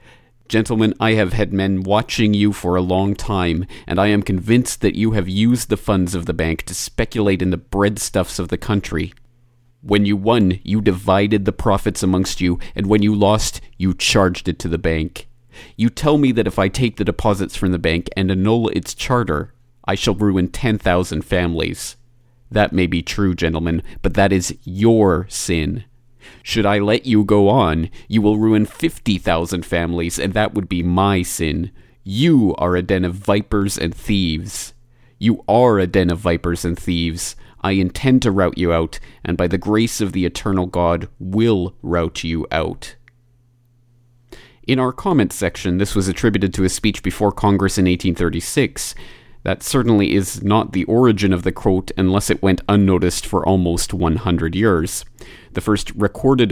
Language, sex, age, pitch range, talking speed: English, male, 40-59, 90-110 Hz, 175 wpm